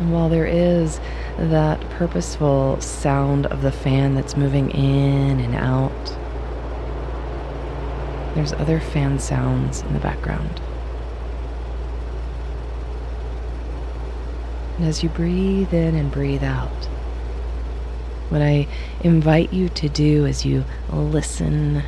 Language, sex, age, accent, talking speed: English, female, 30-49, American, 105 wpm